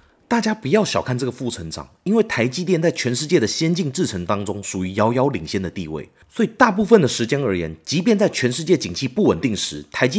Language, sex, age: Chinese, male, 30-49